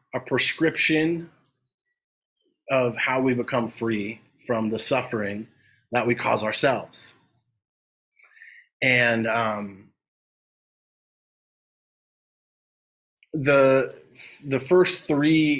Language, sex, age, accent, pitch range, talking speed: English, male, 30-49, American, 110-135 Hz, 75 wpm